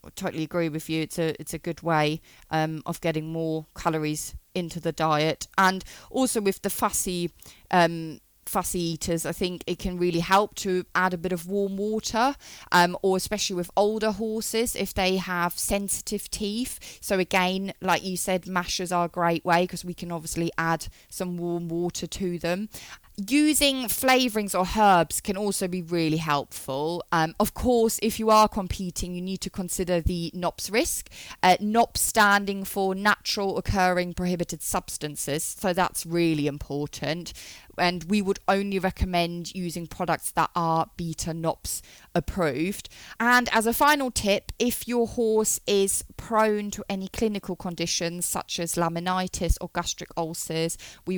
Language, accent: English, British